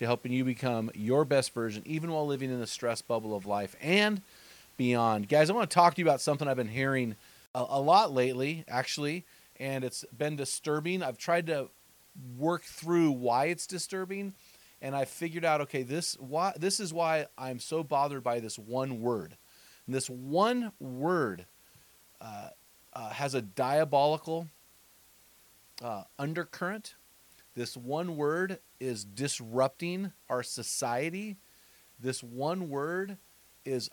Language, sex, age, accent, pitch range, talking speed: English, male, 30-49, American, 125-165 Hz, 150 wpm